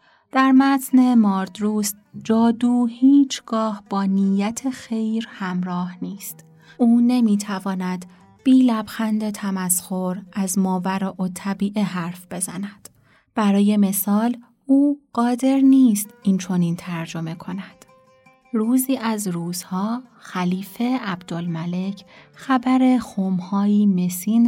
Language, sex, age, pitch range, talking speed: Persian, female, 30-49, 185-230 Hz, 95 wpm